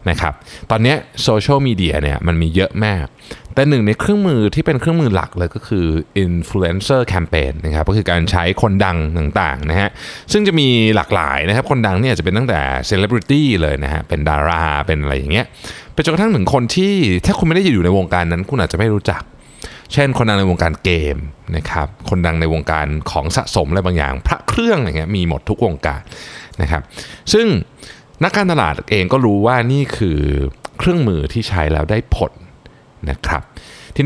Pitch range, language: 80-125 Hz, Thai